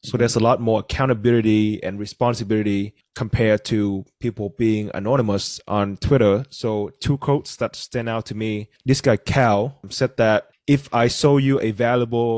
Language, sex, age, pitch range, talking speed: English, male, 20-39, 110-130 Hz, 165 wpm